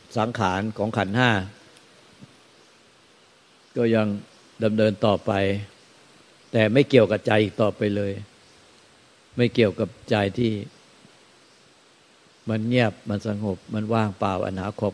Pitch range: 100-115 Hz